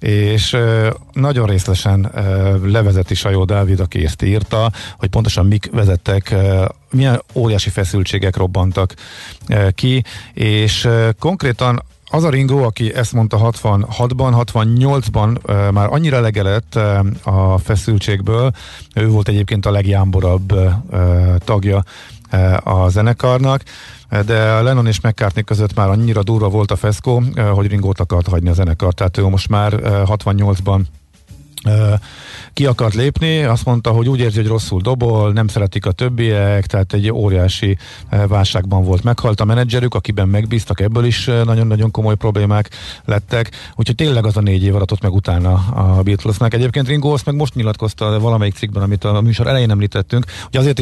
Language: Hungarian